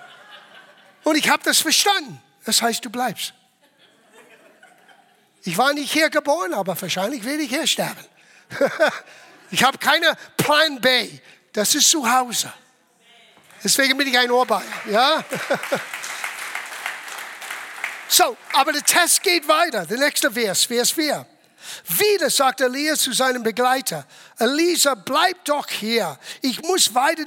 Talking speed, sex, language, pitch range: 135 wpm, male, German, 225-310 Hz